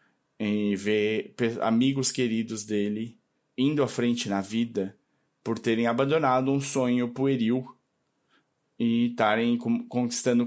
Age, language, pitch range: 20-39, Portuguese, 105-130 Hz